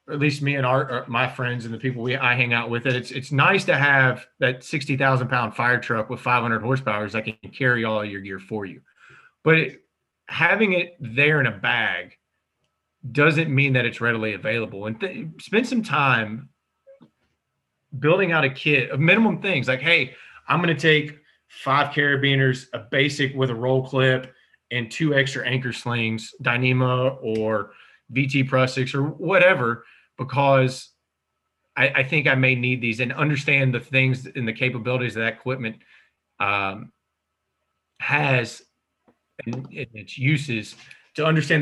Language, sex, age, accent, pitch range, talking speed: English, male, 30-49, American, 120-145 Hz, 165 wpm